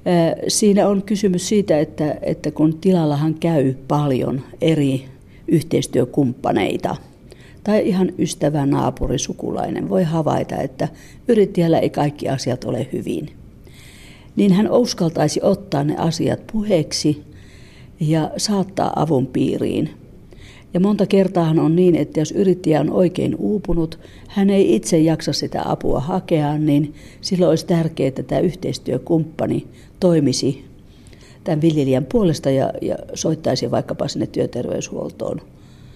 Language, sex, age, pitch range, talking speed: Finnish, female, 50-69, 140-175 Hz, 120 wpm